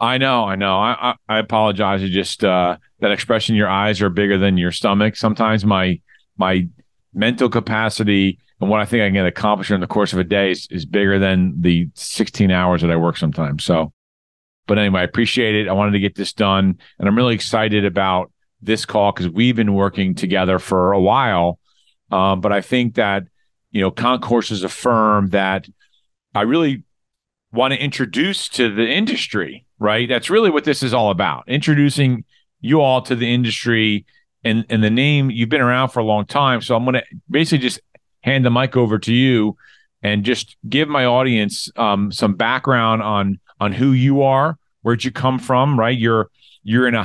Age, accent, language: 40-59, American, English